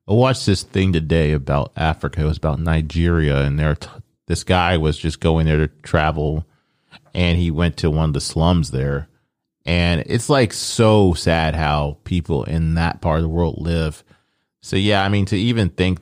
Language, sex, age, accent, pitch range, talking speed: English, male, 30-49, American, 80-105 Hz, 190 wpm